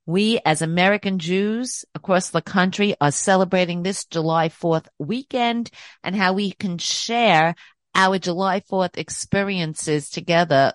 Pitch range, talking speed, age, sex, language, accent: 160-205 Hz, 130 wpm, 50-69, female, English, American